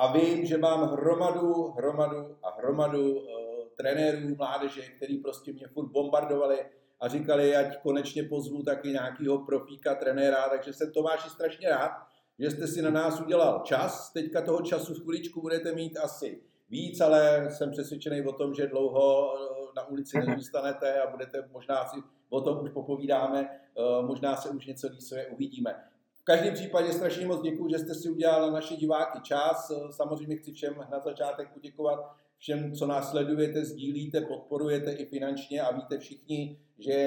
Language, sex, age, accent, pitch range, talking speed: Czech, male, 50-69, native, 135-150 Hz, 165 wpm